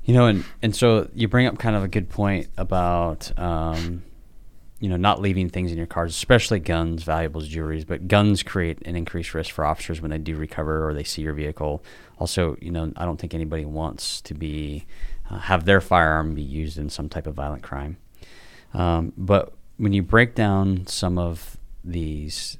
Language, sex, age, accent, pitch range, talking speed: English, male, 30-49, American, 80-90 Hz, 200 wpm